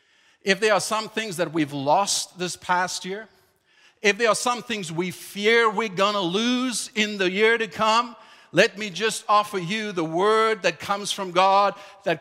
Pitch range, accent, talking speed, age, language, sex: 185-230 Hz, American, 190 wpm, 50-69, English, male